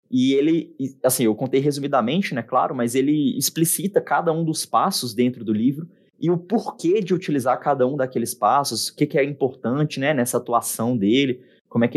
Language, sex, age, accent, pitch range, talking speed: Portuguese, male, 20-39, Brazilian, 125-165 Hz, 195 wpm